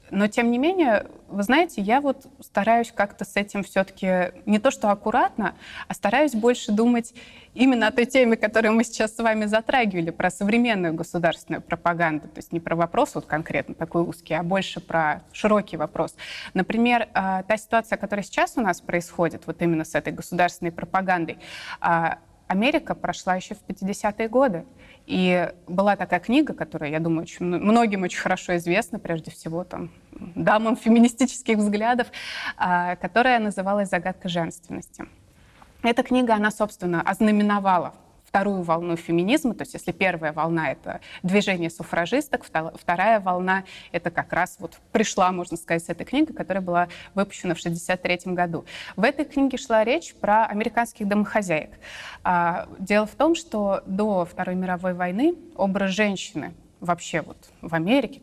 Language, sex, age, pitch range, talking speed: Russian, female, 20-39, 175-225 Hz, 155 wpm